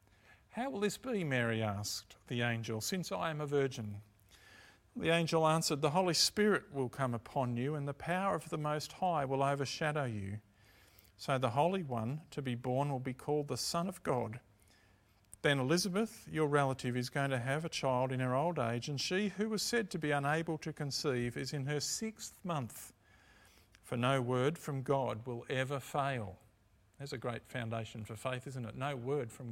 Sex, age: male, 50-69